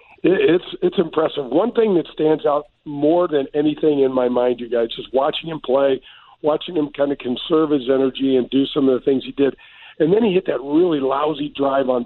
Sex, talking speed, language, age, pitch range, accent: male, 220 wpm, English, 50-69, 135-160 Hz, American